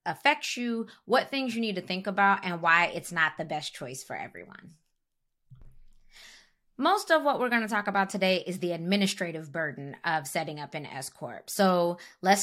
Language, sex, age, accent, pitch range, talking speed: English, female, 20-39, American, 175-225 Hz, 185 wpm